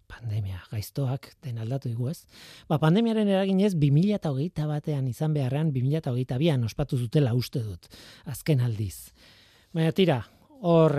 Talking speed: 125 wpm